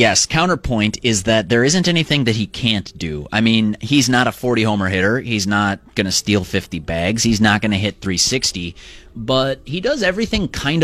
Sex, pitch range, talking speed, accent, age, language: male, 95-125 Hz, 200 wpm, American, 30-49, English